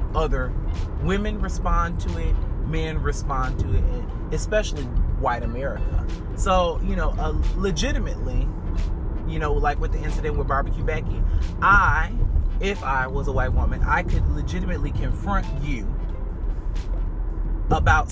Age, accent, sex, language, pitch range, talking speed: 30-49, American, male, English, 80-100 Hz, 130 wpm